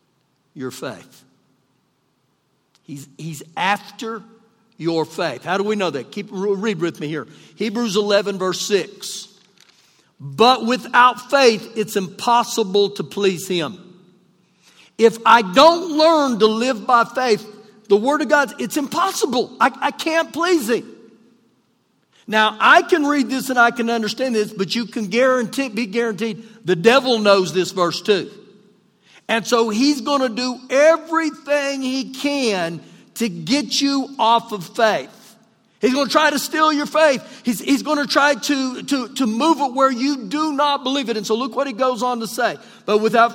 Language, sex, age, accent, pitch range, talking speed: English, male, 50-69, American, 205-265 Hz, 165 wpm